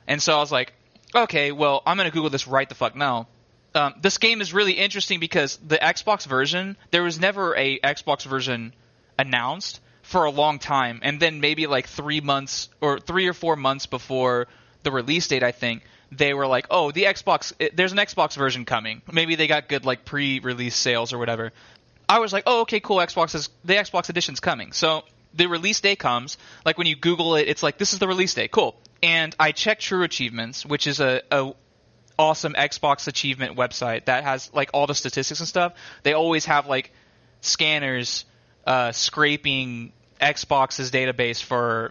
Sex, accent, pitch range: male, American, 130-170 Hz